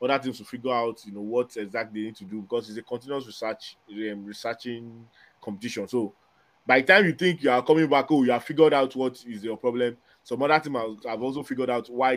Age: 20-39